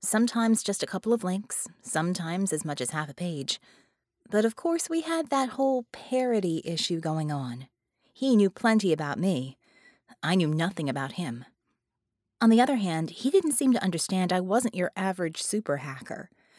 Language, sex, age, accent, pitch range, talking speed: English, female, 30-49, American, 160-230 Hz, 175 wpm